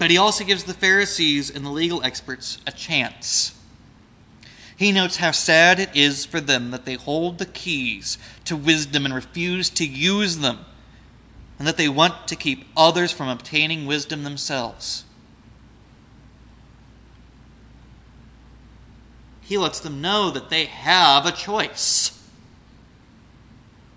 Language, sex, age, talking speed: English, male, 30-49, 130 wpm